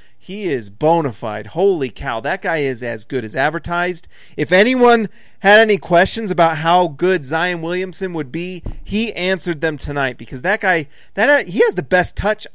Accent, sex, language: American, male, English